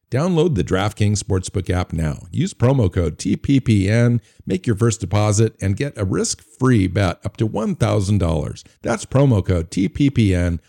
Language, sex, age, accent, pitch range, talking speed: English, male, 50-69, American, 90-105 Hz, 145 wpm